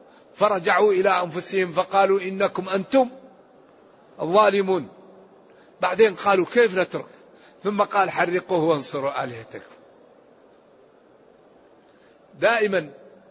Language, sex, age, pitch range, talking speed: Arabic, male, 60-79, 170-220 Hz, 75 wpm